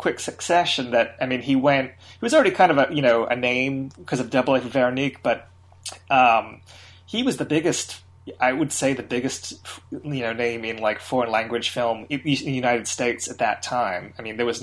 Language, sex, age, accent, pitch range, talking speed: English, male, 30-49, American, 110-135 Hz, 220 wpm